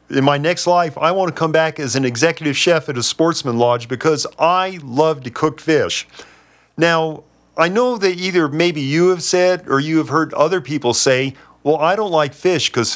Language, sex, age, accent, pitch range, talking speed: English, male, 40-59, American, 140-180 Hz, 210 wpm